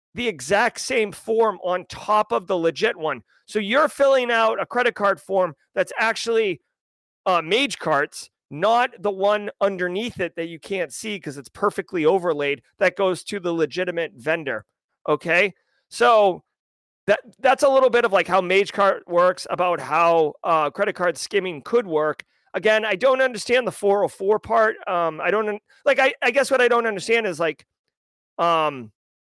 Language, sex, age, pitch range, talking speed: English, male, 30-49, 160-215 Hz, 170 wpm